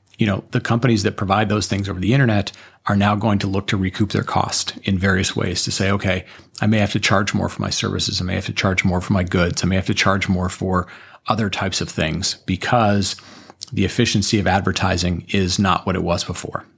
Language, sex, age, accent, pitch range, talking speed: English, male, 40-59, American, 95-110 Hz, 235 wpm